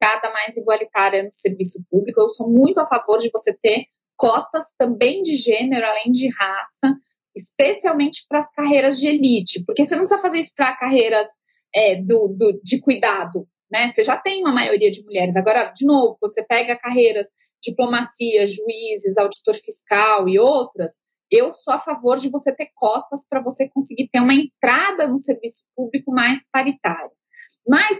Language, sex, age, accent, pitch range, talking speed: Portuguese, female, 20-39, Brazilian, 225-285 Hz, 170 wpm